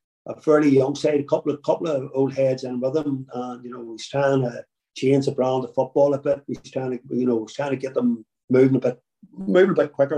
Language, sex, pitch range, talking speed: English, male, 125-140 Hz, 260 wpm